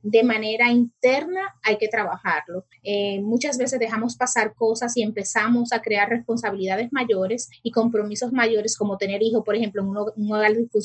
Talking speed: 165 wpm